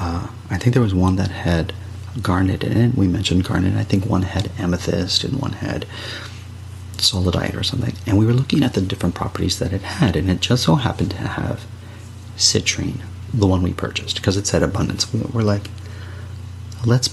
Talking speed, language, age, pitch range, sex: 195 wpm, English, 30-49, 95-110 Hz, male